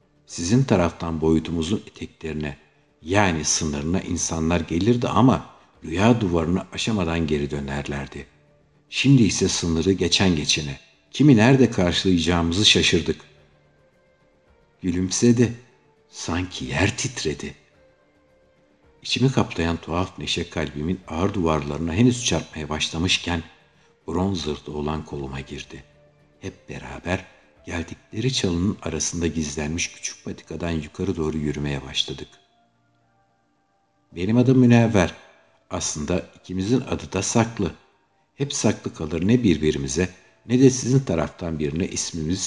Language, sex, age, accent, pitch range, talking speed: Turkish, male, 60-79, native, 75-105 Hz, 105 wpm